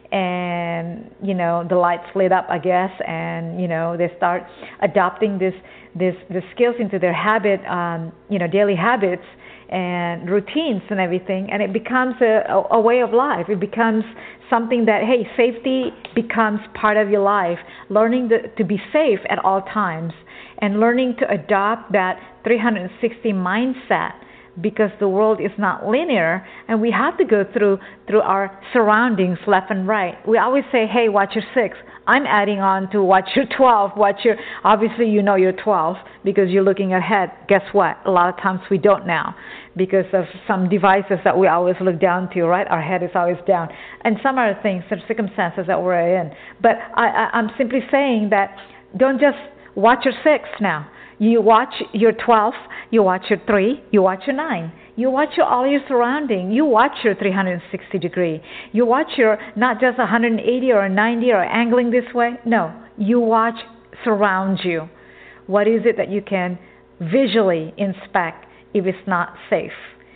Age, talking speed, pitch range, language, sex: 50-69, 180 wpm, 185-230 Hz, English, female